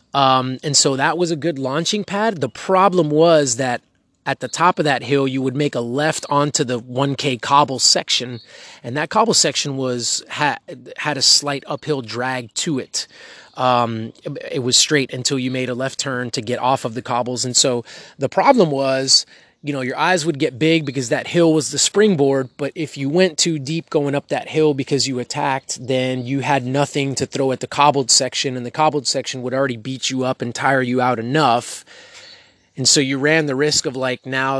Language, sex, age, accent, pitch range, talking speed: English, male, 30-49, American, 125-145 Hz, 210 wpm